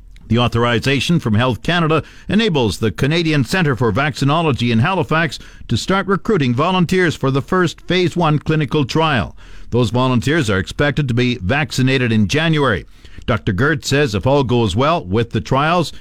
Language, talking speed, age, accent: English, 160 wpm, 50-69, American